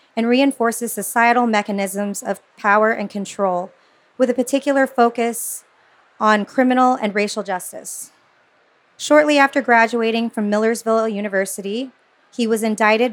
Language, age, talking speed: English, 30-49, 120 wpm